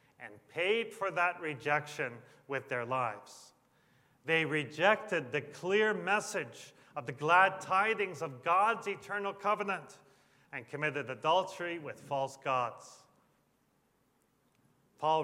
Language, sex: English, male